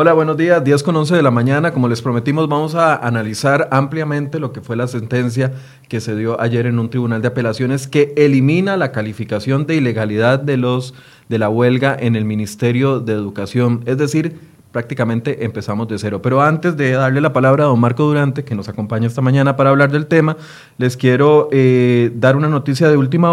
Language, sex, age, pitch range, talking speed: Spanish, male, 30-49, 120-145 Hz, 205 wpm